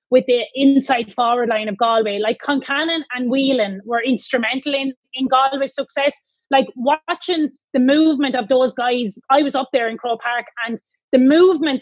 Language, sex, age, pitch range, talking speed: English, female, 20-39, 245-285 Hz, 175 wpm